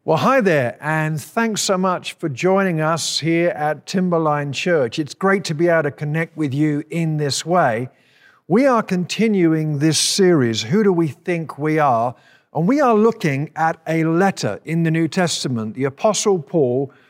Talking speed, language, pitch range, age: 180 wpm, English, 145-185 Hz, 50-69